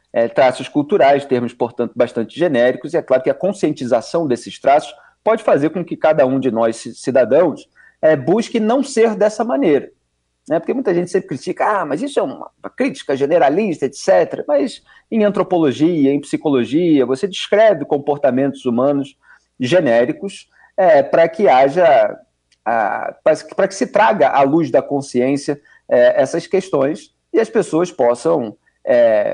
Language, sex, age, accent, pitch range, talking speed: Portuguese, male, 40-59, Brazilian, 140-195 Hz, 150 wpm